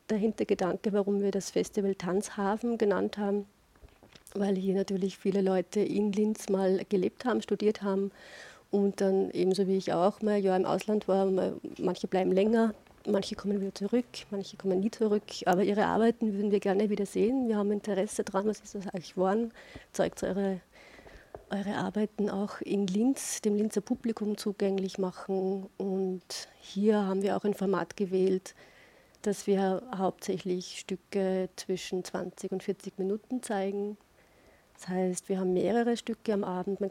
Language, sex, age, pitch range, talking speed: German, female, 30-49, 190-210 Hz, 165 wpm